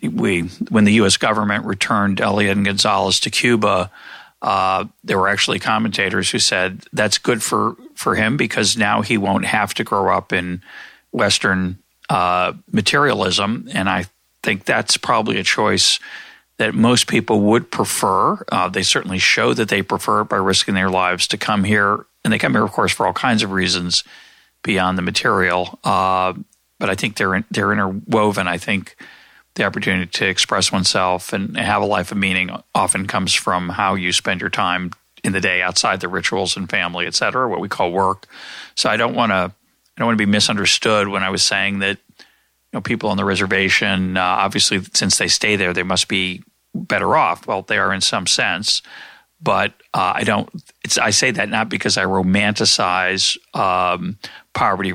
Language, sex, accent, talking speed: English, male, American, 185 wpm